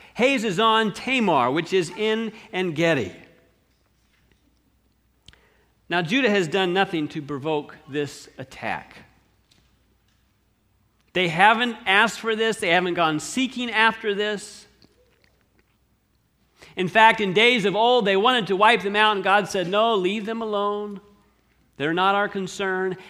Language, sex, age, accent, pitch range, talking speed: English, male, 50-69, American, 145-205 Hz, 130 wpm